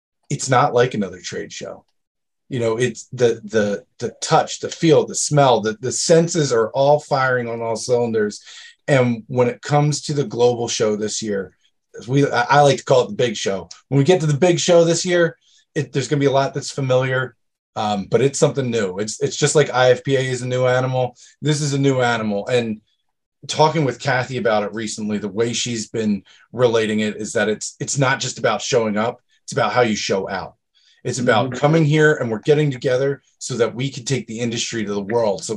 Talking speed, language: 220 wpm, English